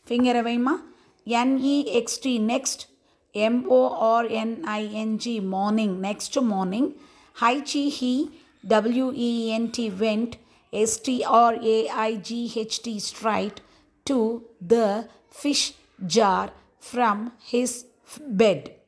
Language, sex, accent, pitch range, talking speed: Tamil, female, native, 215-255 Hz, 75 wpm